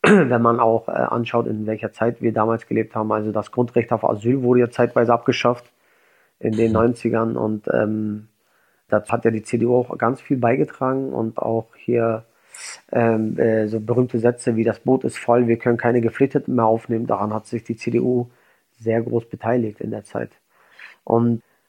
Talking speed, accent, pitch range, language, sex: 180 wpm, German, 110-120 Hz, German, male